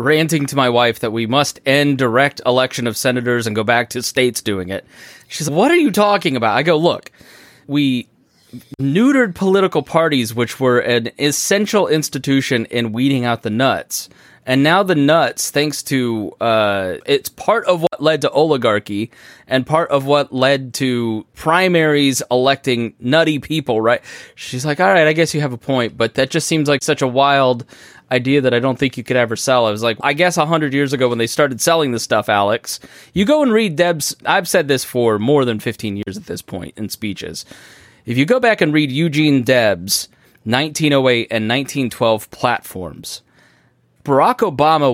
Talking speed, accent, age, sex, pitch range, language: 190 wpm, American, 20-39, male, 120-155 Hz, English